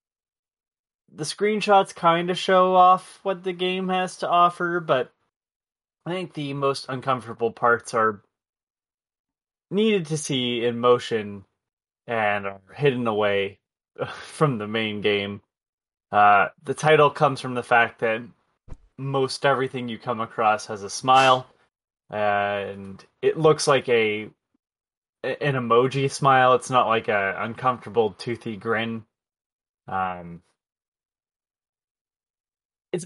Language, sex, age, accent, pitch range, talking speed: English, male, 20-39, American, 110-150 Hz, 120 wpm